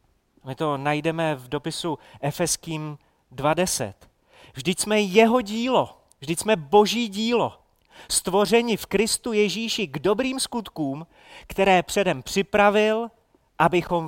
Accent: native